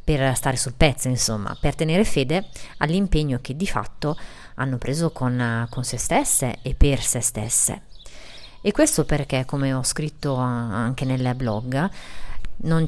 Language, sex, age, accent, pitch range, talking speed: Italian, female, 30-49, native, 125-150 Hz, 150 wpm